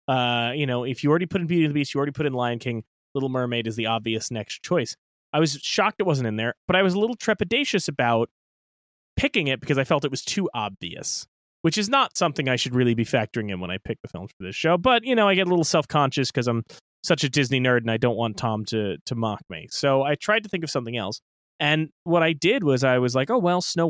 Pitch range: 115-160 Hz